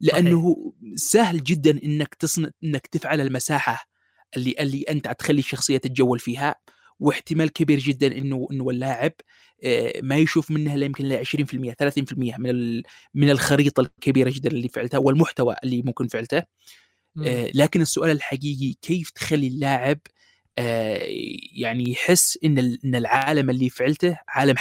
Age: 20-39